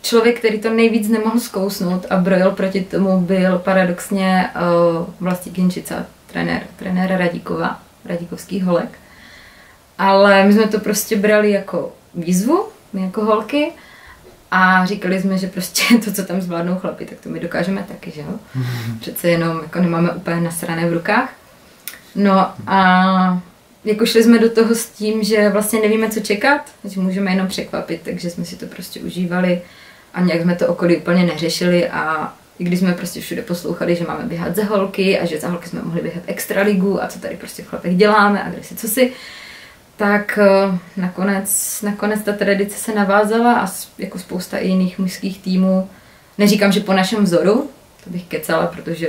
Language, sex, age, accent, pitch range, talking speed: Czech, female, 20-39, native, 175-205 Hz, 170 wpm